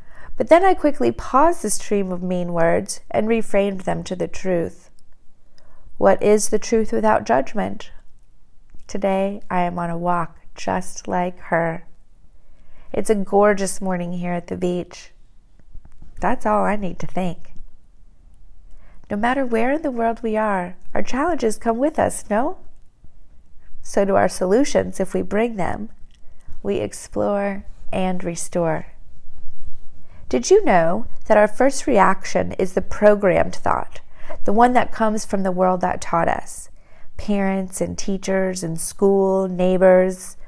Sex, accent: female, American